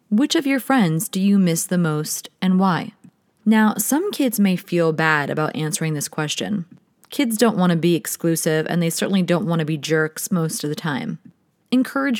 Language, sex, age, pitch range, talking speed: English, female, 30-49, 165-220 Hz, 195 wpm